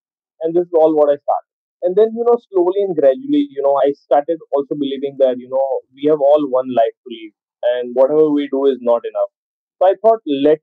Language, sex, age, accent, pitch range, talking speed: English, male, 20-39, Indian, 130-180 Hz, 230 wpm